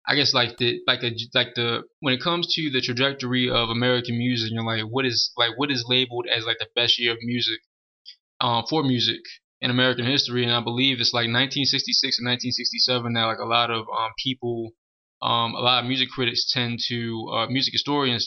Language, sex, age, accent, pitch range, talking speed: English, male, 20-39, American, 120-130 Hz, 215 wpm